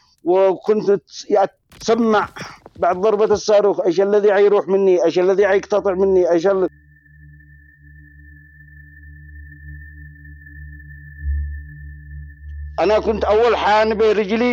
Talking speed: 85 wpm